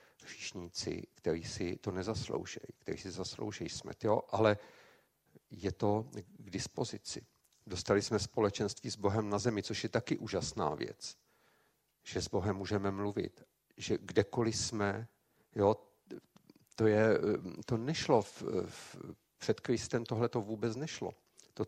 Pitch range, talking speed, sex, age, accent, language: 95-115 Hz, 135 wpm, male, 50-69, native, Czech